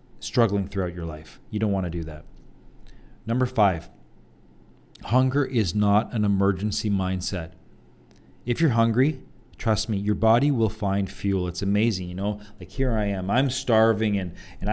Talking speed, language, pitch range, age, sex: 165 wpm, English, 95-125 Hz, 40-59, male